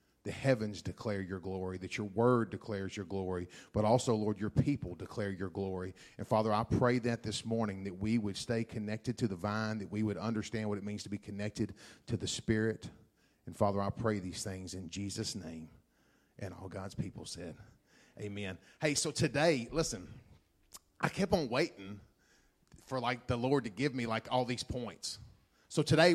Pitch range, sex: 105-135 Hz, male